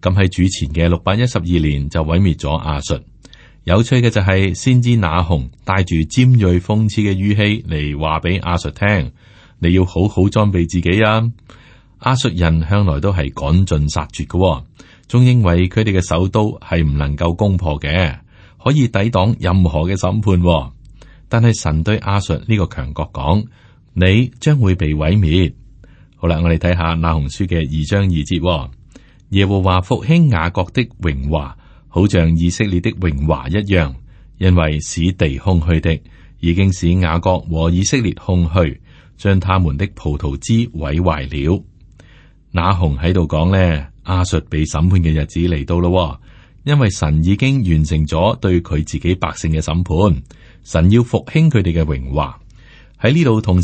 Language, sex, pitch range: Chinese, male, 80-100 Hz